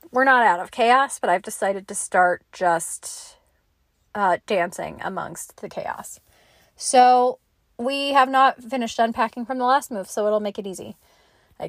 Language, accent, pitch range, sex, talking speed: English, American, 220-290 Hz, female, 165 wpm